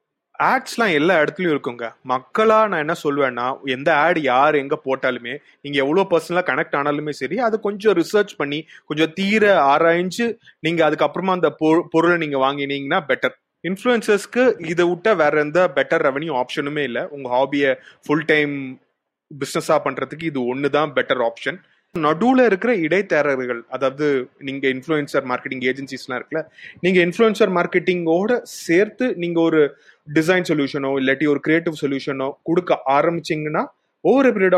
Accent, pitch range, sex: native, 135-175 Hz, male